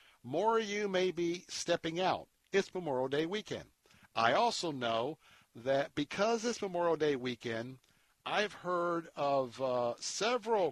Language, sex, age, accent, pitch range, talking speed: English, male, 60-79, American, 140-175 Hz, 140 wpm